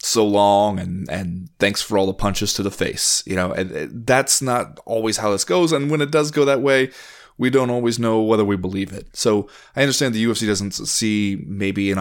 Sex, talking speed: male, 230 wpm